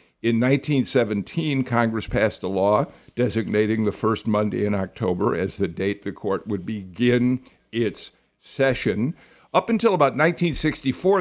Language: English